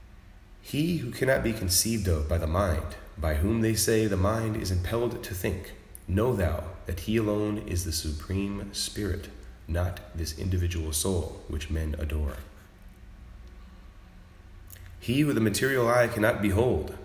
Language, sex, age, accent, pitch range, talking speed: English, male, 30-49, American, 90-105 Hz, 150 wpm